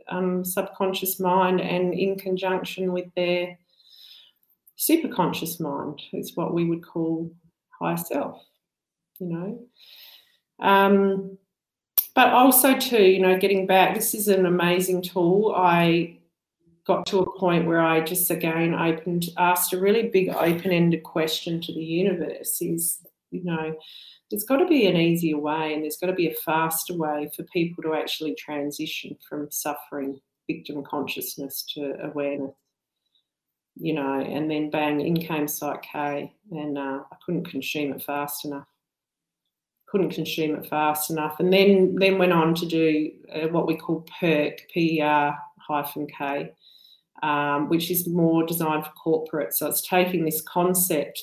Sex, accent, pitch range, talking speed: female, Australian, 150-185 Hz, 150 wpm